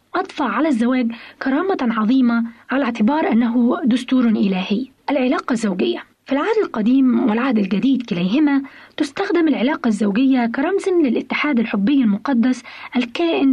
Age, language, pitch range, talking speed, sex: 20-39, Arabic, 235-295 Hz, 115 wpm, female